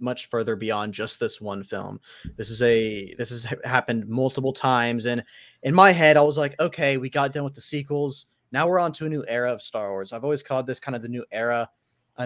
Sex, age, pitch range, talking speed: male, 20-39, 115-145 Hz, 240 wpm